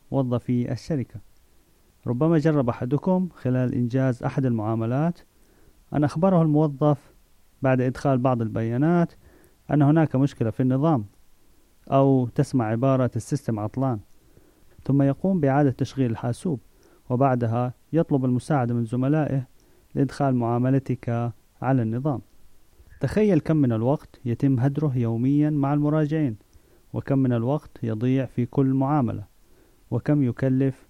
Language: Arabic